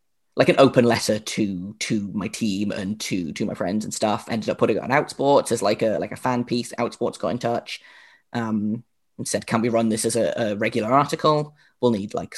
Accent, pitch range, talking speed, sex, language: British, 110-125 Hz, 230 wpm, male, English